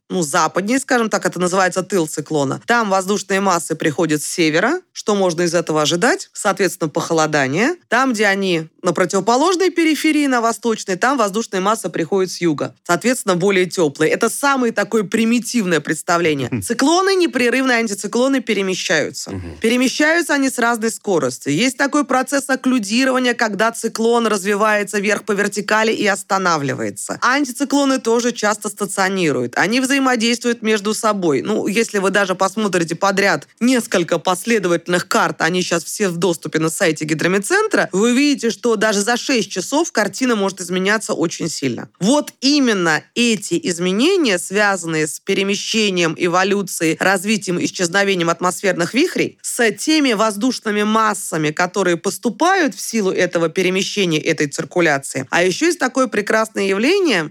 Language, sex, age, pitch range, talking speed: Russian, female, 20-39, 175-240 Hz, 140 wpm